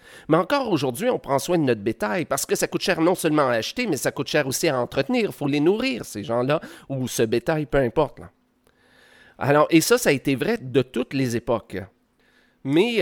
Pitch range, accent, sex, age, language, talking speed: 125-170 Hz, Canadian, male, 30-49, French, 220 wpm